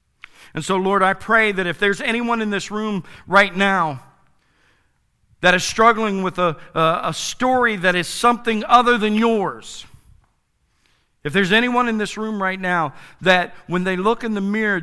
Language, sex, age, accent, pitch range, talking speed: English, male, 50-69, American, 140-210 Hz, 175 wpm